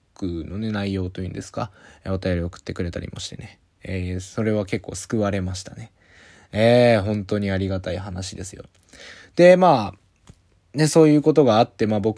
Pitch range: 95-110 Hz